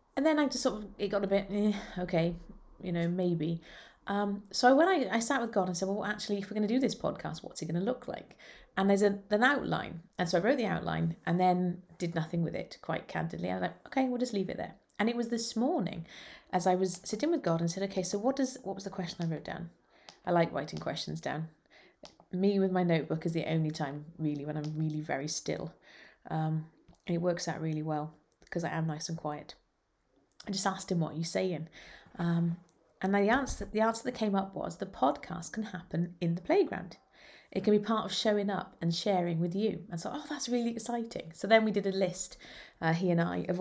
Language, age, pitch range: English, 30-49, 165-210 Hz